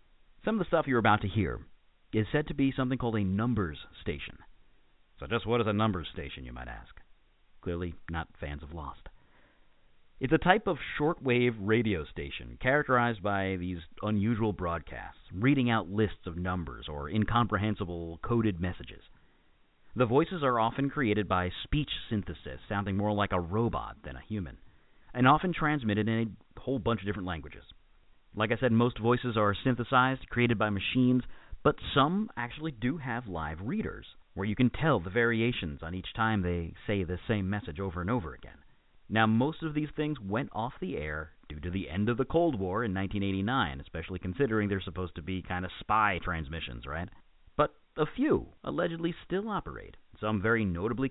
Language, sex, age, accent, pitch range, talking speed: English, male, 50-69, American, 90-125 Hz, 180 wpm